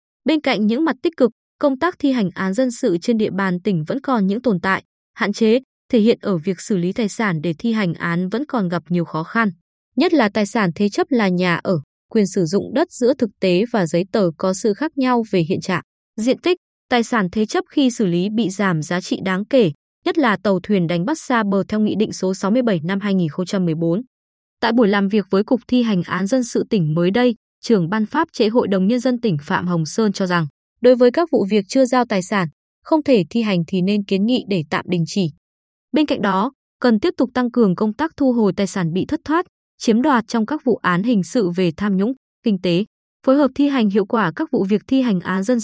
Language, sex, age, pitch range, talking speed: Vietnamese, female, 20-39, 190-250 Hz, 250 wpm